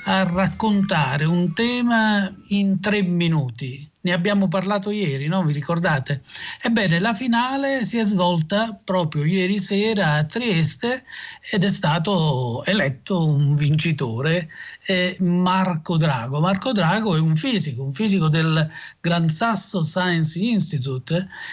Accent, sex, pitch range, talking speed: native, male, 155-195 Hz, 130 wpm